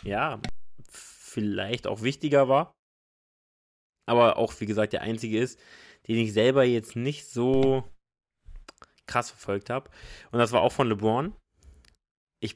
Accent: German